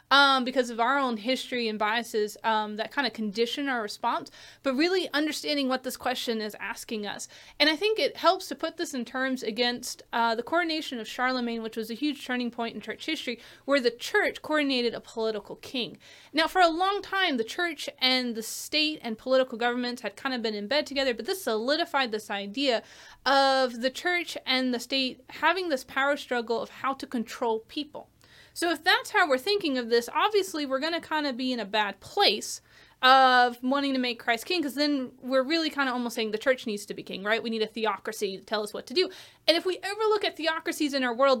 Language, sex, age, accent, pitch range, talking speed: English, female, 30-49, American, 235-315 Hz, 225 wpm